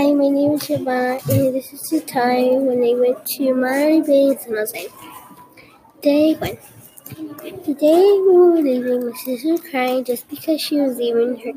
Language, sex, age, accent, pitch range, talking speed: English, female, 20-39, American, 250-330 Hz, 190 wpm